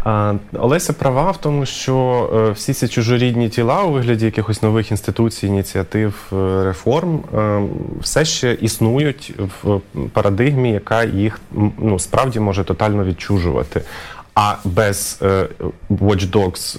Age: 20-39